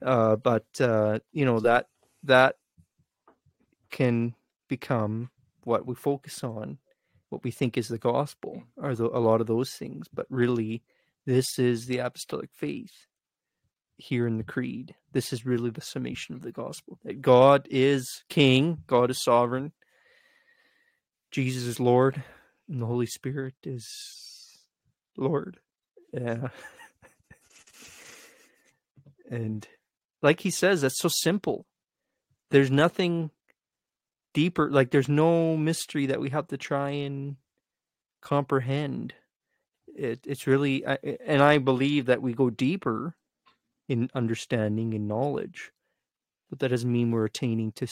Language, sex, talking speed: English, male, 130 wpm